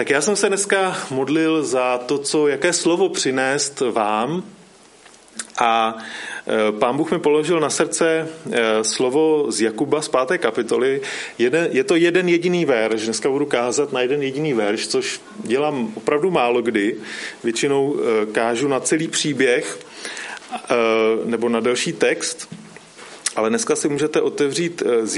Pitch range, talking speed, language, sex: 130-205 Hz, 140 wpm, Czech, male